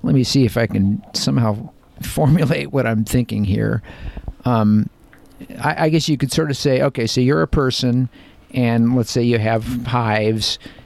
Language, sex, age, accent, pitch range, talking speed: English, male, 50-69, American, 105-125 Hz, 175 wpm